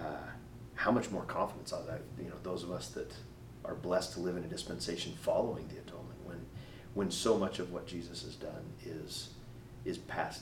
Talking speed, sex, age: 200 wpm, male, 40-59